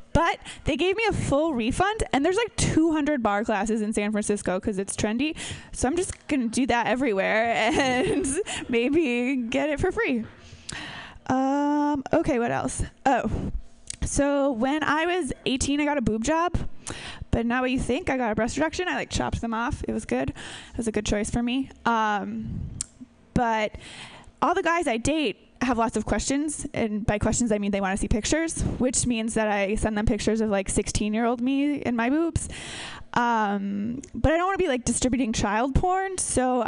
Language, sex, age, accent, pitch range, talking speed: English, female, 20-39, American, 225-320 Hz, 195 wpm